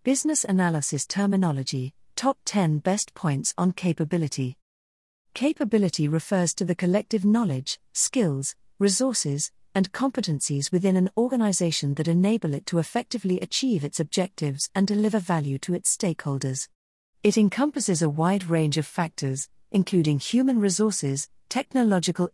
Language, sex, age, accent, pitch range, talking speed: English, female, 40-59, British, 150-220 Hz, 125 wpm